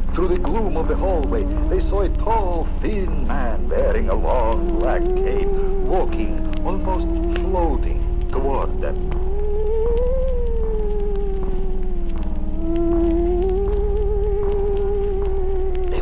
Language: English